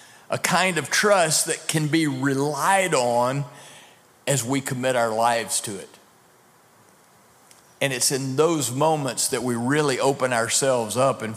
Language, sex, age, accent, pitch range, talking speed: English, male, 50-69, American, 115-140 Hz, 150 wpm